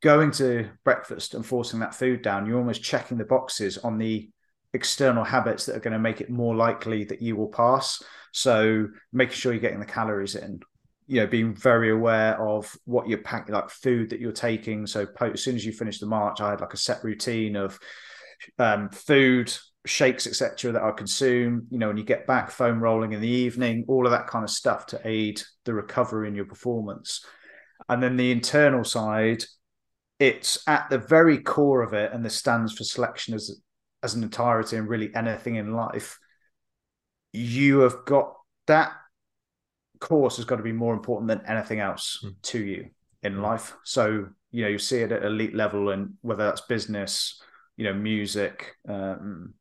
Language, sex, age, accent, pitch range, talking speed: English, male, 30-49, British, 105-120 Hz, 190 wpm